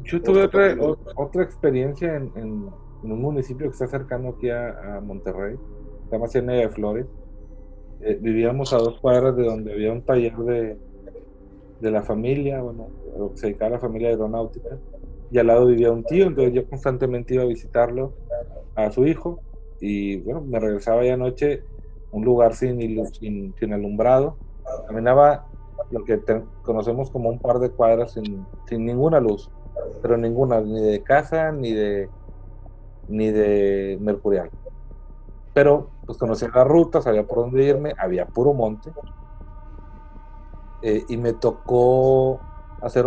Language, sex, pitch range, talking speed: Spanish, male, 105-135 Hz, 160 wpm